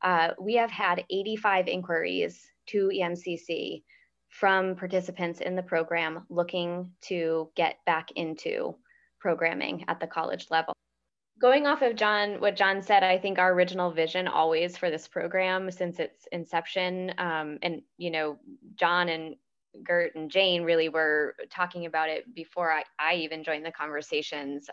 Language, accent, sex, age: English, American, female, 20-39